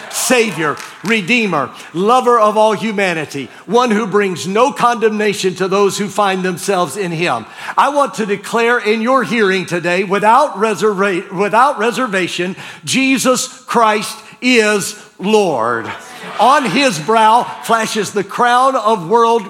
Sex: male